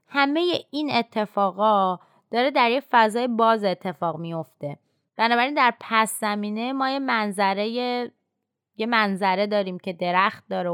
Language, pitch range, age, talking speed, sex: Persian, 190-255 Hz, 20-39, 130 wpm, female